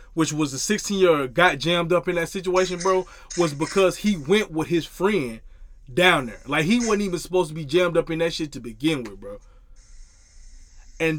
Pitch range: 155-210 Hz